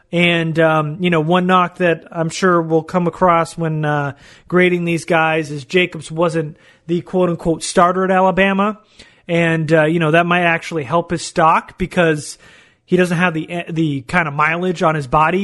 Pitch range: 160-185 Hz